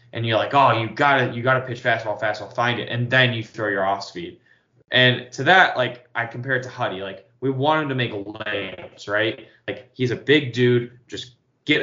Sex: male